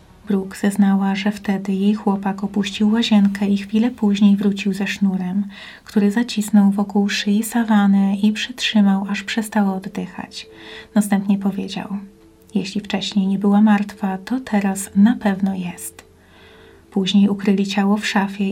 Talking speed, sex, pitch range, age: 135 wpm, female, 195-210 Hz, 30-49